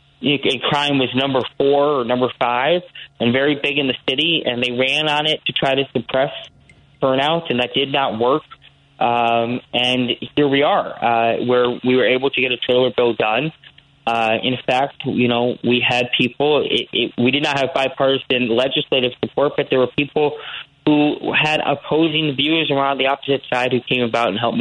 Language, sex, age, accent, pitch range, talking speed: English, male, 20-39, American, 125-150 Hz, 195 wpm